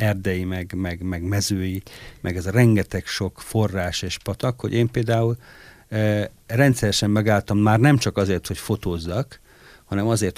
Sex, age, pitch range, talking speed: male, 50-69, 95-115 Hz, 150 wpm